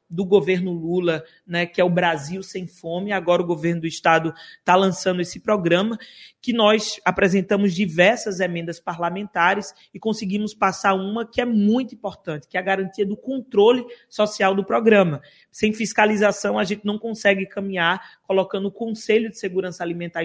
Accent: Brazilian